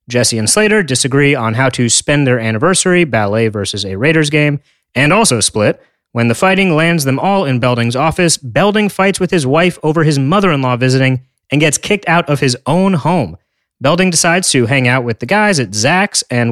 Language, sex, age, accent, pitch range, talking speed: English, male, 30-49, American, 120-180 Hz, 200 wpm